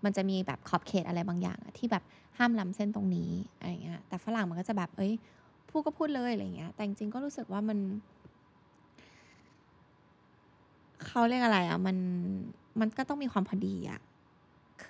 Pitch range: 185-235 Hz